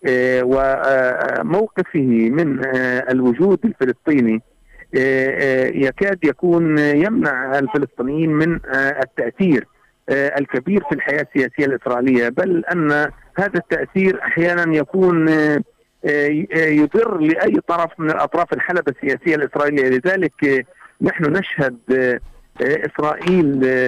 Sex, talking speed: male, 85 wpm